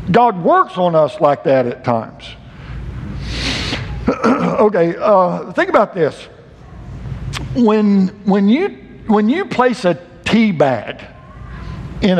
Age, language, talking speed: 60-79, English, 115 wpm